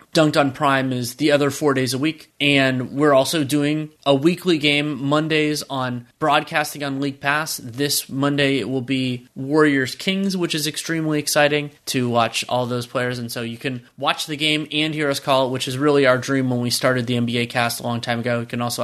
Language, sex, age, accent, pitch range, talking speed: English, male, 20-39, American, 125-145 Hz, 220 wpm